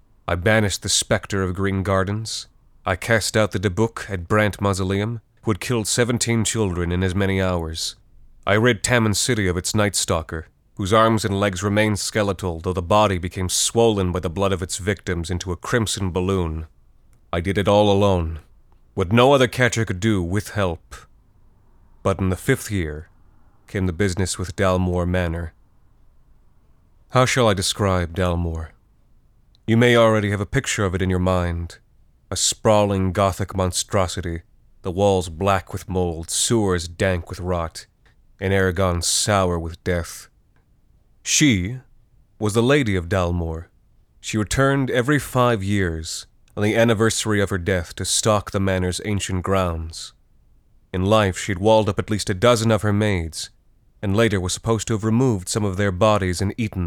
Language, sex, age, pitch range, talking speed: English, male, 30-49, 90-110 Hz, 170 wpm